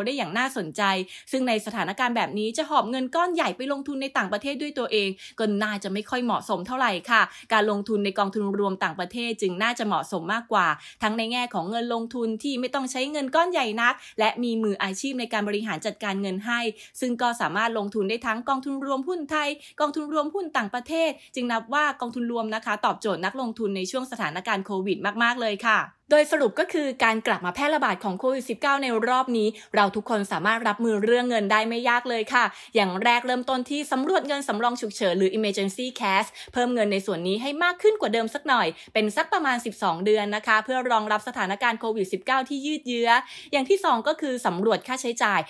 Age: 20-39